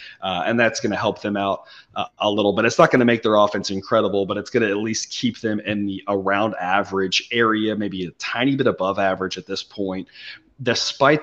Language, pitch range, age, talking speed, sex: English, 100-120 Hz, 30-49, 230 wpm, male